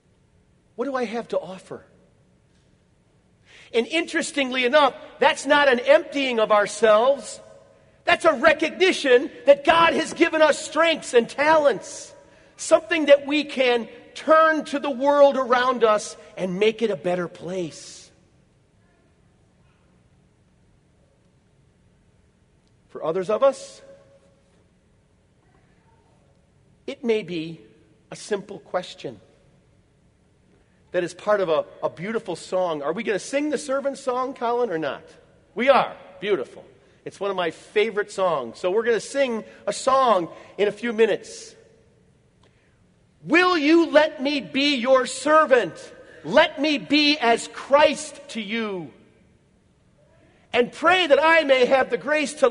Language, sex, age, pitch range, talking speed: English, male, 50-69, 220-300 Hz, 130 wpm